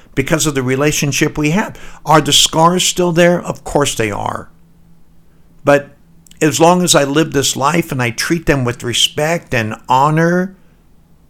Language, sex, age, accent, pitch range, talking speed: English, male, 60-79, American, 115-160 Hz, 165 wpm